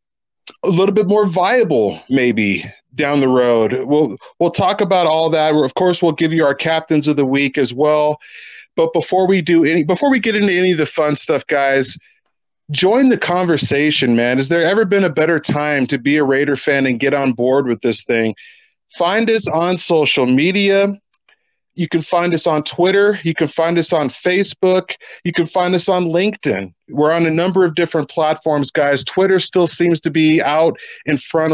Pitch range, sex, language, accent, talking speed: 145-180 Hz, male, English, American, 200 wpm